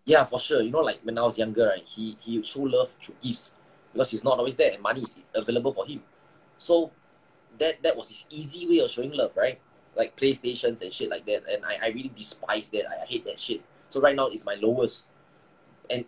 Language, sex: English, male